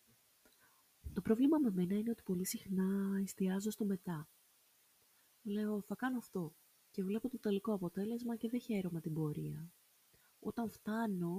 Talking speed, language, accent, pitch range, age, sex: 140 wpm, Greek, native, 170-235 Hz, 20-39, female